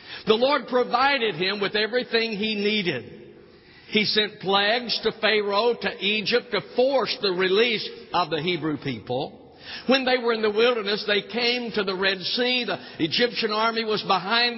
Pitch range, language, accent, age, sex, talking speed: 185-235 Hz, English, American, 60-79, male, 165 wpm